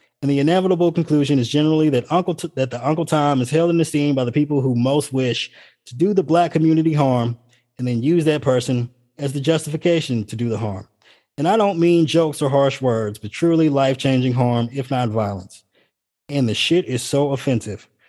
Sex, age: male, 20-39